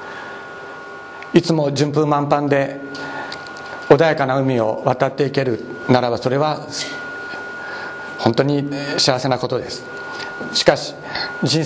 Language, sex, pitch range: Japanese, male, 135-165 Hz